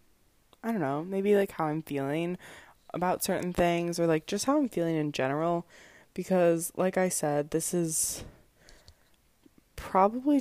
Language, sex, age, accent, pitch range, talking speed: English, female, 20-39, American, 165-205 Hz, 150 wpm